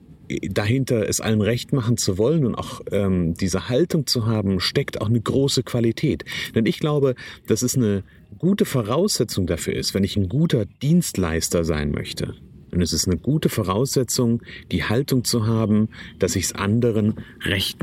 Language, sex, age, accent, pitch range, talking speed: German, male, 40-59, German, 95-125 Hz, 170 wpm